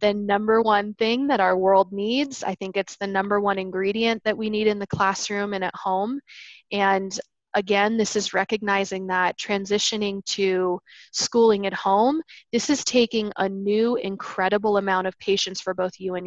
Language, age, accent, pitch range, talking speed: English, 20-39, American, 190-220 Hz, 175 wpm